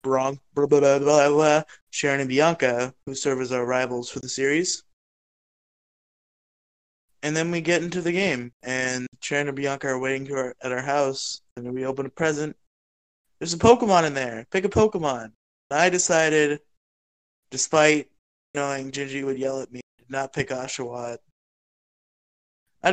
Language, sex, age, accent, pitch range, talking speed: English, male, 20-39, American, 130-165 Hz, 165 wpm